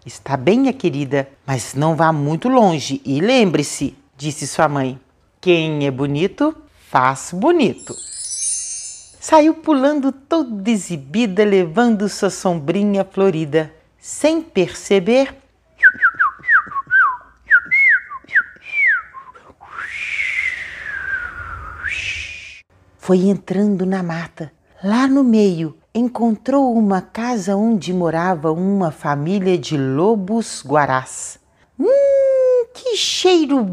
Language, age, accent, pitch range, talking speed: Portuguese, 40-59, Brazilian, 155-255 Hz, 85 wpm